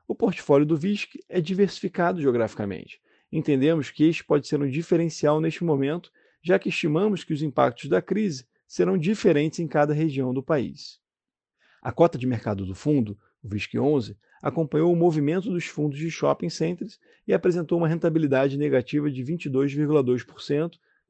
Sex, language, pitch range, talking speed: male, Portuguese, 130-170 Hz, 155 wpm